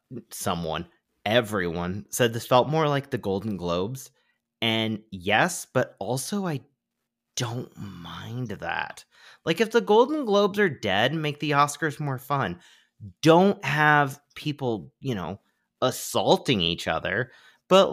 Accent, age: American, 30-49